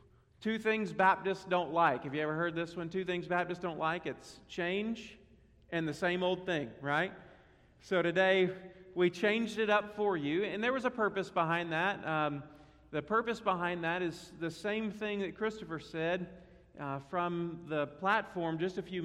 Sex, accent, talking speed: male, American, 185 wpm